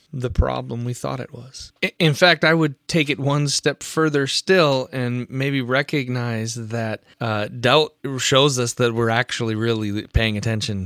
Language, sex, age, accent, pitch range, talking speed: English, male, 20-39, American, 115-150 Hz, 165 wpm